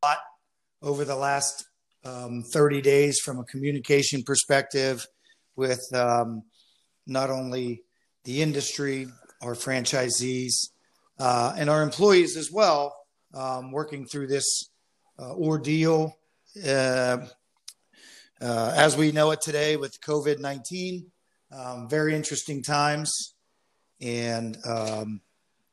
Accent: American